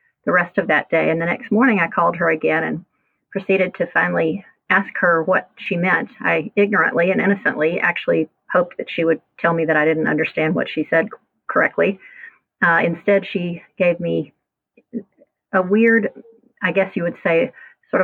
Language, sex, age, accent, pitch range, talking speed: English, female, 40-59, American, 170-205 Hz, 175 wpm